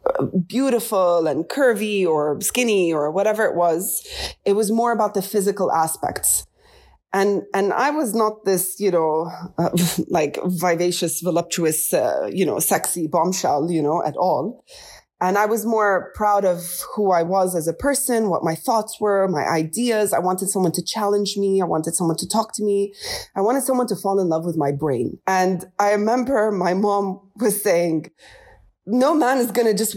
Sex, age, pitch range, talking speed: female, 20-39, 180-230 Hz, 180 wpm